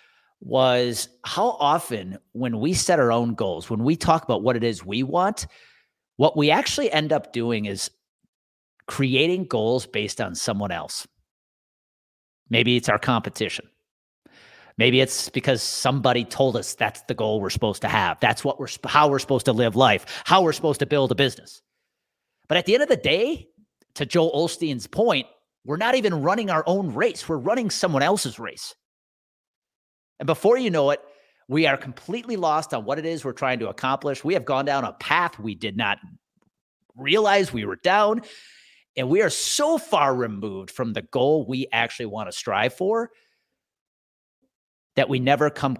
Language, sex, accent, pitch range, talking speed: English, male, American, 115-165 Hz, 180 wpm